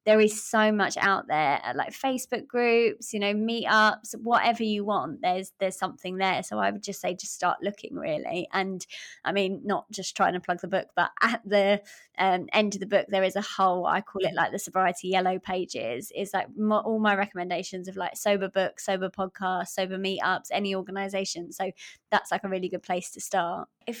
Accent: British